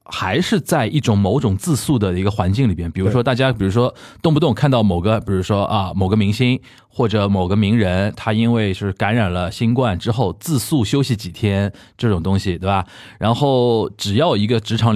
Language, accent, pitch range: Chinese, native, 100-135 Hz